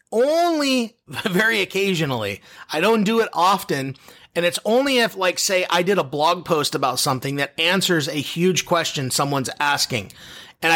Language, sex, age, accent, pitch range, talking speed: English, male, 30-49, American, 145-190 Hz, 160 wpm